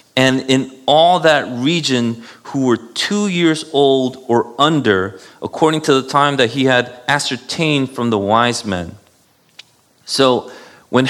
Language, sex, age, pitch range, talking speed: English, male, 30-49, 110-150 Hz, 140 wpm